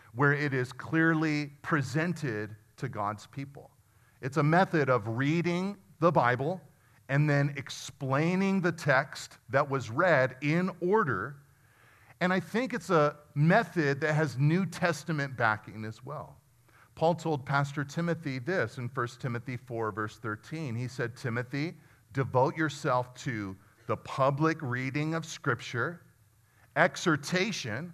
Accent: American